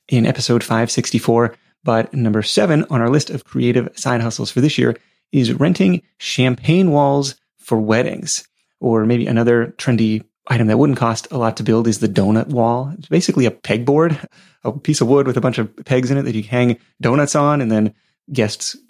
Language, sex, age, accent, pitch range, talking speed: English, male, 30-49, American, 115-150 Hz, 195 wpm